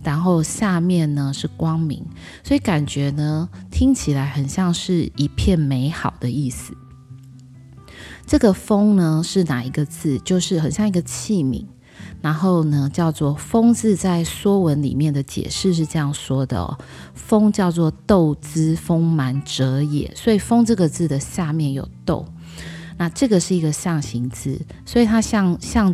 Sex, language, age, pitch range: female, Chinese, 20-39, 130-170 Hz